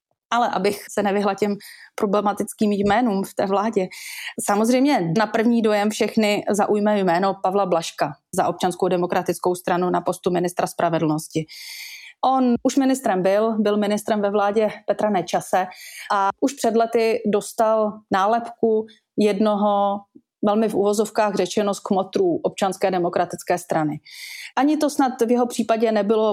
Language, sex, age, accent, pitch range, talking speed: Czech, female, 30-49, native, 185-220 Hz, 135 wpm